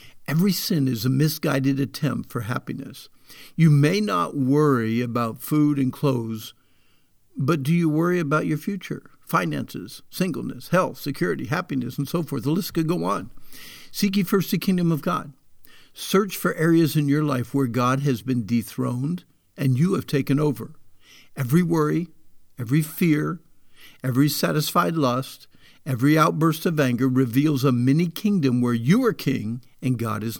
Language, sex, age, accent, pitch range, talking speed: English, male, 60-79, American, 130-170 Hz, 160 wpm